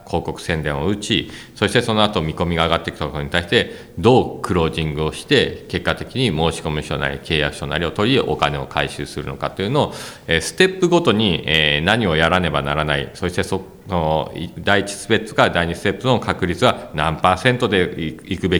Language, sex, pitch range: Japanese, male, 80-100 Hz